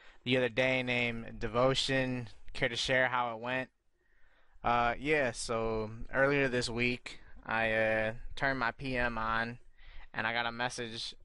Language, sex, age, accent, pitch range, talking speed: English, male, 20-39, American, 115-125 Hz, 150 wpm